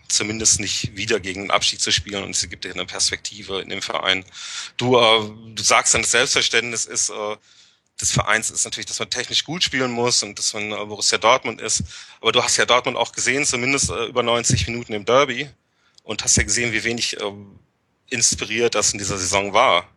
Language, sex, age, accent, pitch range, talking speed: German, male, 30-49, German, 105-135 Hz, 215 wpm